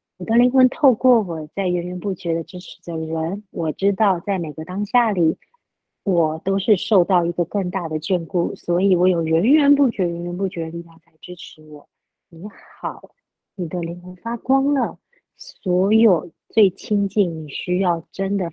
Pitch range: 165-205 Hz